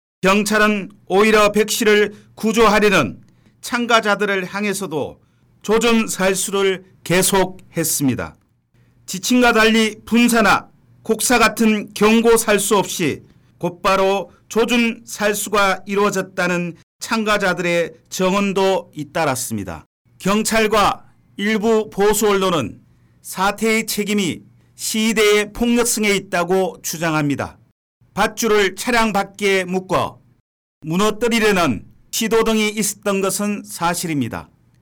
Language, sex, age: Korean, male, 40-59